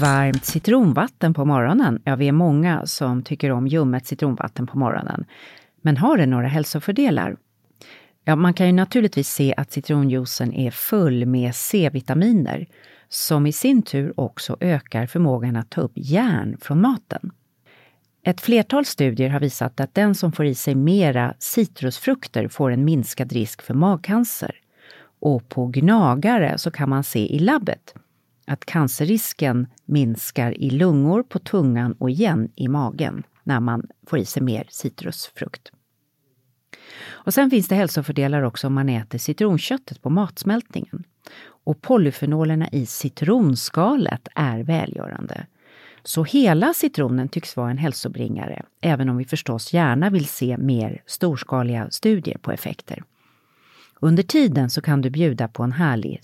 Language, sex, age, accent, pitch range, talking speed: English, female, 40-59, Swedish, 130-180 Hz, 145 wpm